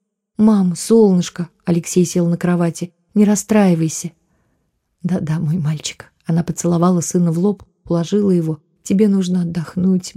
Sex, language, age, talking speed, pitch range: female, Russian, 30-49, 130 wpm, 145-180 Hz